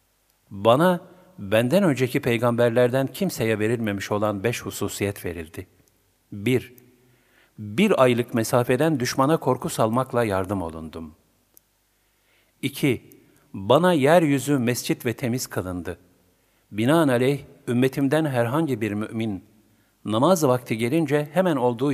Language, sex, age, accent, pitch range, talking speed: Turkish, male, 50-69, native, 100-140 Hz, 100 wpm